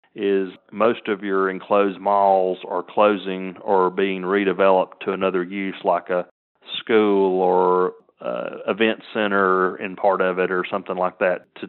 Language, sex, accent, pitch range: English, male, American, 95-105 Hz